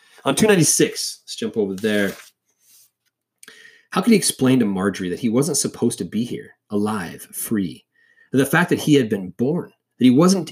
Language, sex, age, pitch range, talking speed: English, male, 30-49, 105-150 Hz, 185 wpm